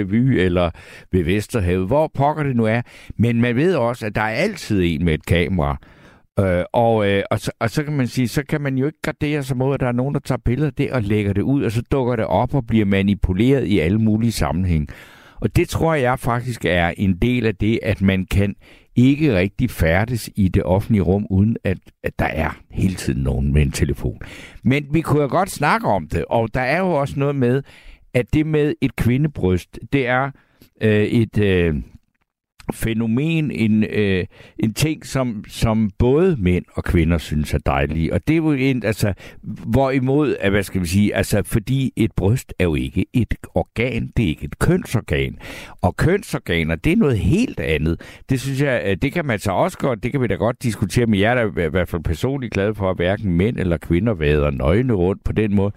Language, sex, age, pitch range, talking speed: Danish, male, 60-79, 95-130 Hz, 220 wpm